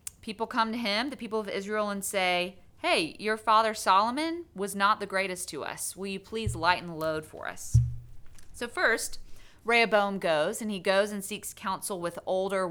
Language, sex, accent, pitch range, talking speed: English, female, American, 160-215 Hz, 190 wpm